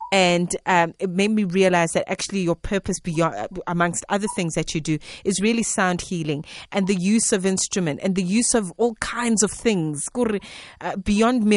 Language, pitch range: English, 165-195 Hz